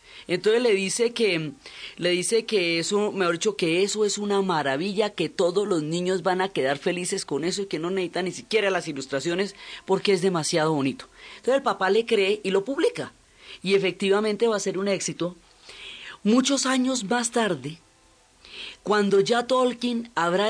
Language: Spanish